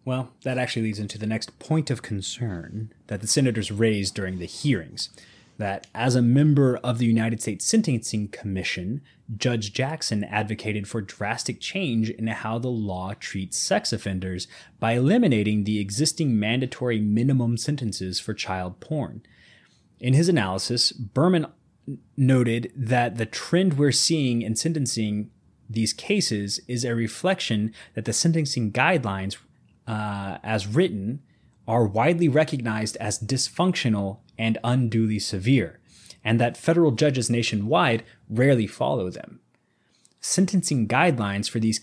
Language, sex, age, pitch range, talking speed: English, male, 30-49, 105-130 Hz, 135 wpm